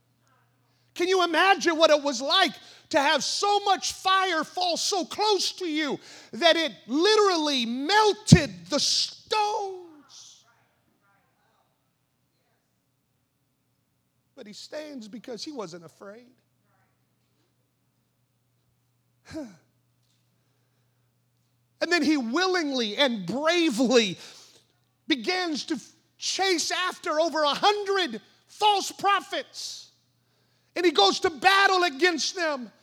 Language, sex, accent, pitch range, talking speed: English, male, American, 220-365 Hz, 95 wpm